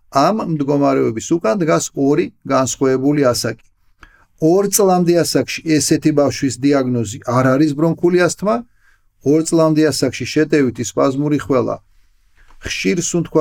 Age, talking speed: 40-59, 80 wpm